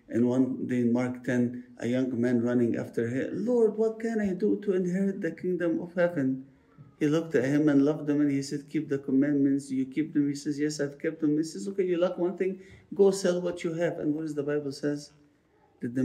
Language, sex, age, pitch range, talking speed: English, male, 50-69, 140-195 Hz, 245 wpm